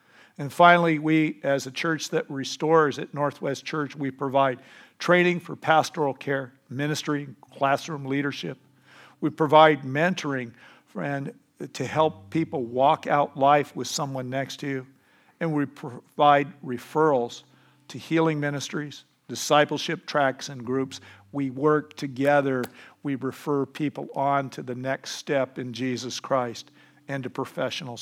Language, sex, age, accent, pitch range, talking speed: English, male, 50-69, American, 125-150 Hz, 135 wpm